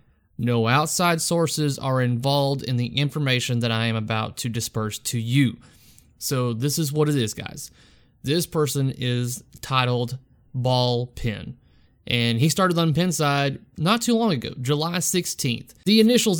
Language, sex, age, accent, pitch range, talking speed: English, male, 30-49, American, 120-145 Hz, 155 wpm